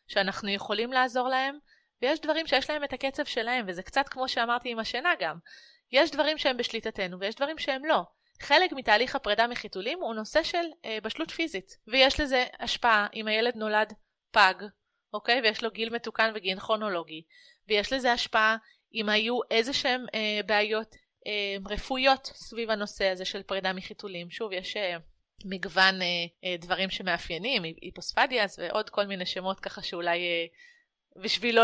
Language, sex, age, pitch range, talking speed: Hebrew, female, 30-49, 200-265 Hz, 135 wpm